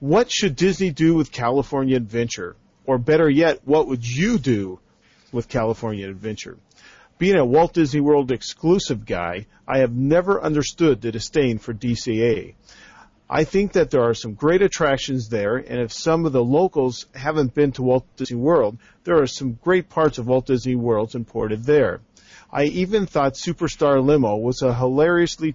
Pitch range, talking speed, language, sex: 120-160 Hz, 170 wpm, English, male